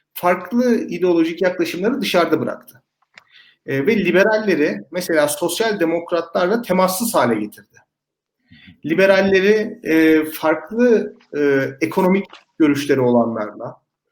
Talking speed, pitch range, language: 90 wpm, 140-200 Hz, Turkish